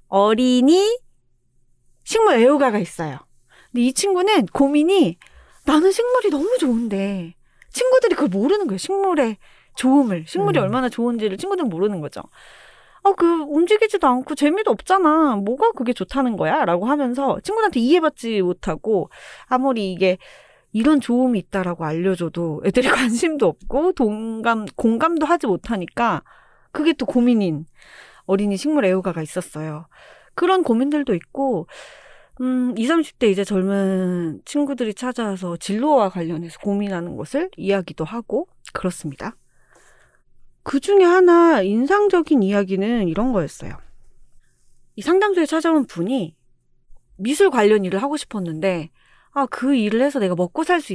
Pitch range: 185-290 Hz